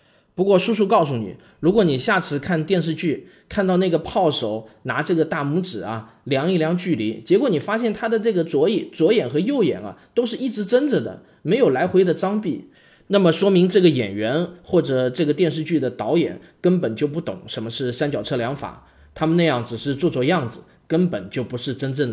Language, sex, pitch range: Chinese, male, 125-180 Hz